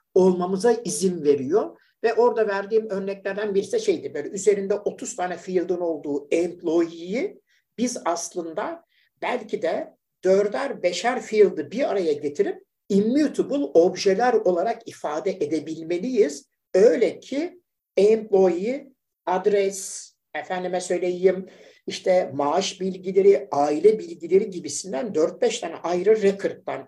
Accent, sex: native, male